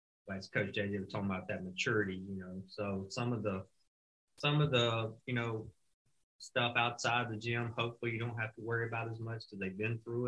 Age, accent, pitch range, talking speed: 30-49, American, 100-115 Hz, 215 wpm